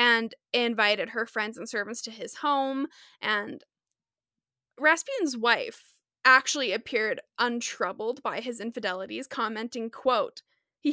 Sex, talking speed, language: female, 115 wpm, English